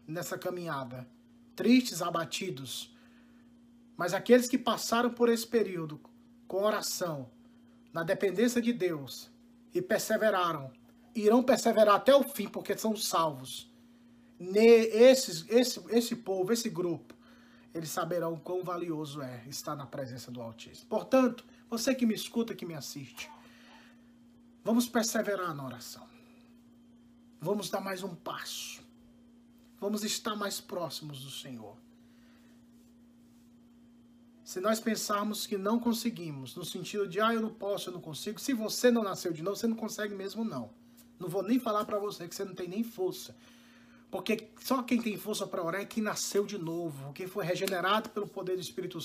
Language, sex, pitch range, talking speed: Portuguese, male, 180-240 Hz, 150 wpm